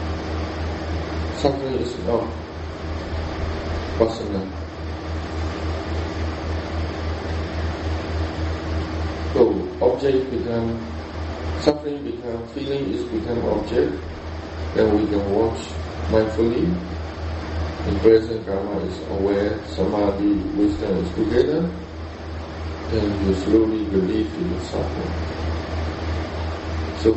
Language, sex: English, male